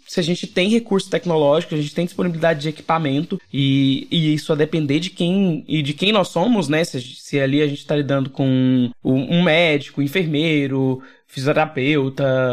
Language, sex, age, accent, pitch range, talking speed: Portuguese, male, 20-39, Brazilian, 140-170 Hz, 180 wpm